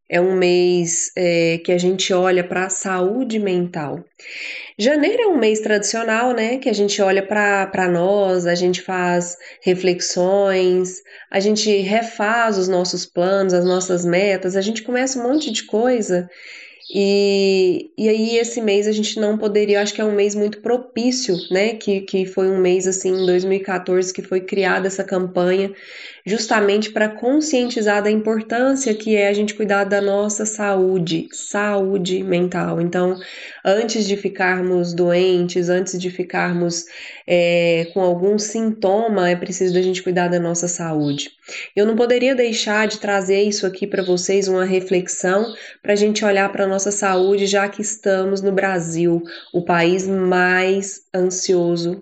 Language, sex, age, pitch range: Portuguese, female, 20-39, 180-210 Hz